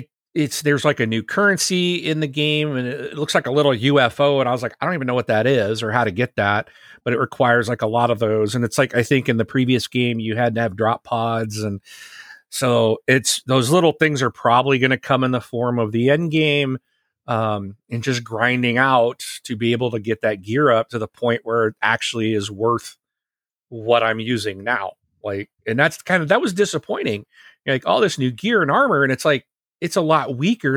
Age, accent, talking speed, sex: 40-59, American, 235 wpm, male